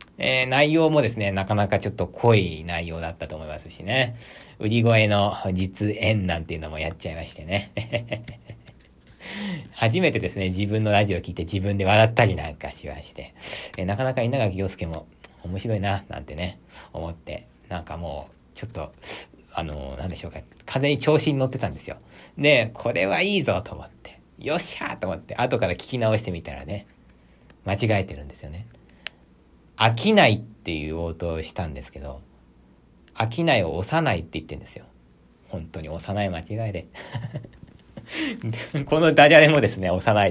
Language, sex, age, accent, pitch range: Japanese, male, 40-59, native, 85-120 Hz